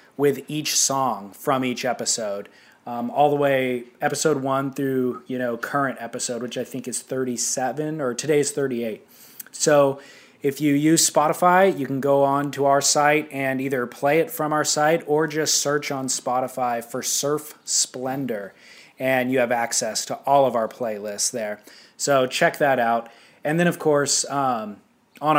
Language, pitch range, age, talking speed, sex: English, 125-145 Hz, 20-39, 175 wpm, male